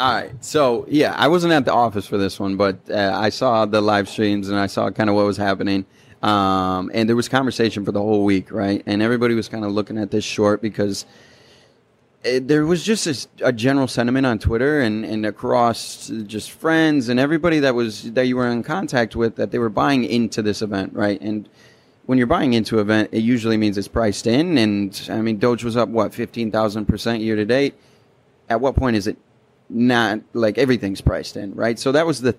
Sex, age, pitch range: male, 30-49, 105-120 Hz